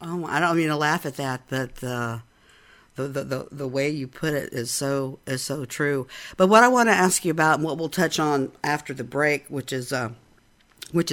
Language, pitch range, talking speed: English, 135-165 Hz, 230 wpm